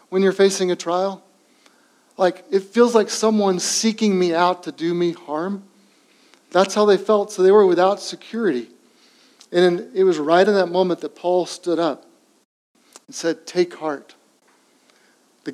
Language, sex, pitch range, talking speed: English, male, 170-215 Hz, 160 wpm